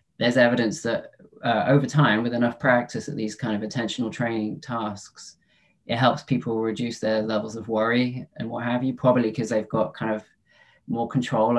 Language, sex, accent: English, male, British